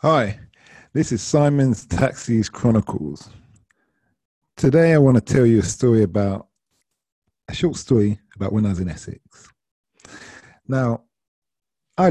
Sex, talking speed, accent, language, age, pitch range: male, 130 wpm, British, English, 40-59, 95-125 Hz